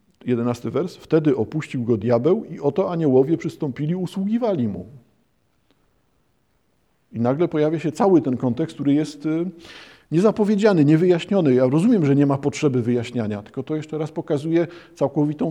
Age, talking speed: 50-69, 145 wpm